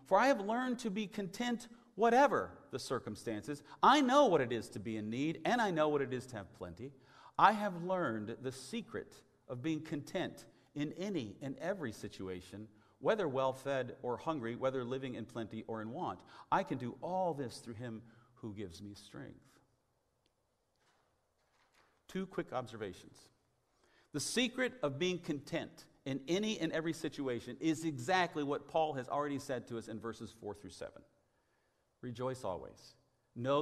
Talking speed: 165 wpm